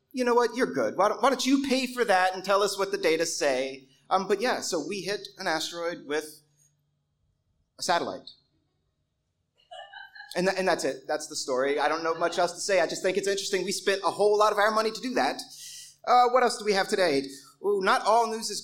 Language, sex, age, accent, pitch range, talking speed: English, male, 30-49, American, 165-230 Hz, 240 wpm